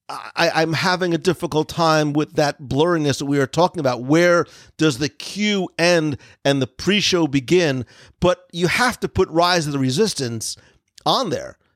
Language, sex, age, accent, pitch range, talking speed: English, male, 50-69, American, 140-180 Hz, 170 wpm